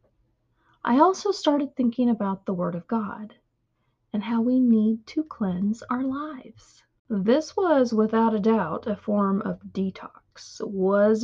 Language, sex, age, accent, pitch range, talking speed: English, female, 30-49, American, 185-240 Hz, 145 wpm